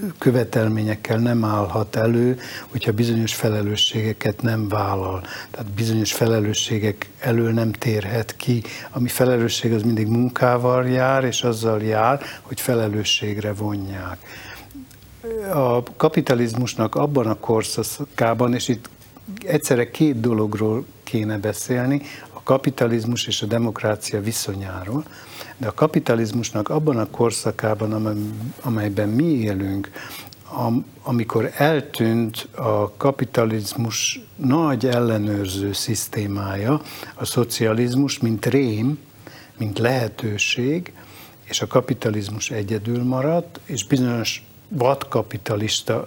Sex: male